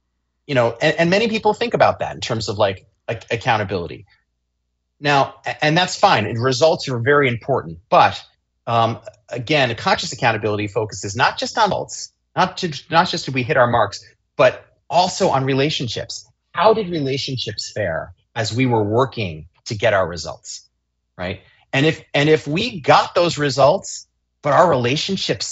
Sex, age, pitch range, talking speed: male, 30-49, 105-160 Hz, 165 wpm